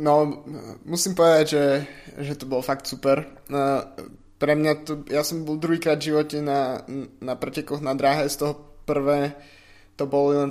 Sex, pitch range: male, 135-150 Hz